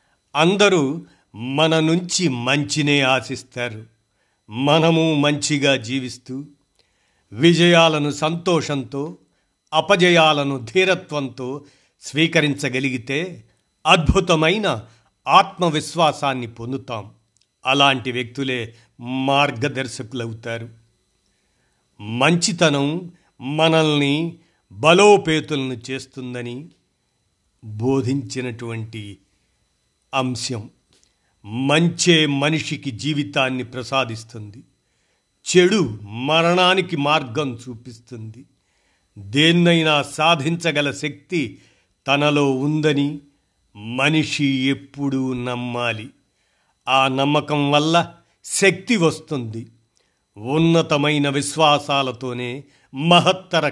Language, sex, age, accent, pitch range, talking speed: Telugu, male, 50-69, native, 125-160 Hz, 55 wpm